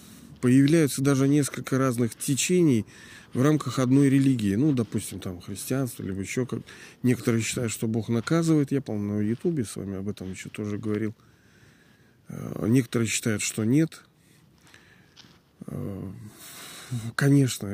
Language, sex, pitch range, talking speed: Russian, male, 110-140 Hz, 125 wpm